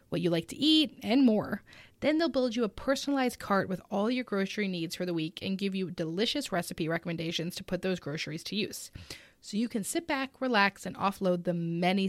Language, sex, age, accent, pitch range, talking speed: English, female, 20-39, American, 185-270 Hz, 220 wpm